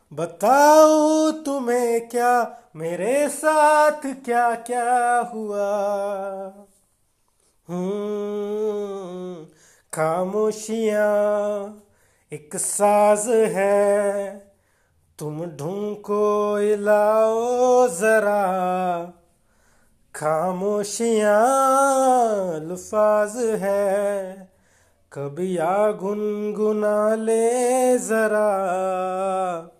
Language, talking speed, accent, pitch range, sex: Hindi, 50 wpm, native, 200-275 Hz, male